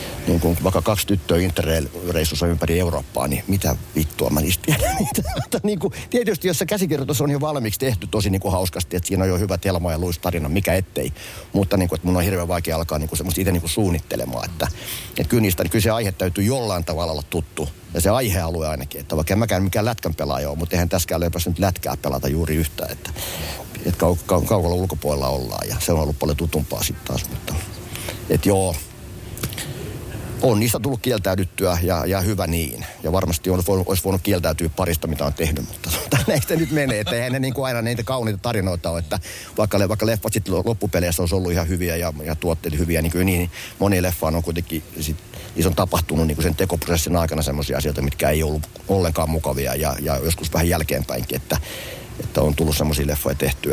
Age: 50-69